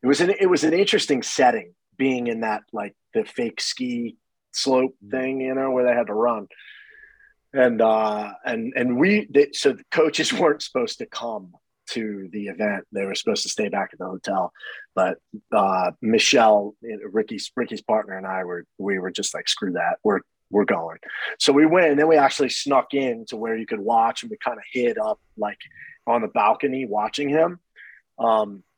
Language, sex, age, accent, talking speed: English, male, 30-49, American, 195 wpm